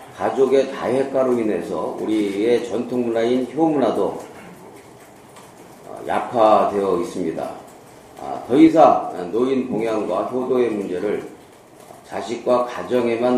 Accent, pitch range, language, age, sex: native, 105-140 Hz, Korean, 40-59, male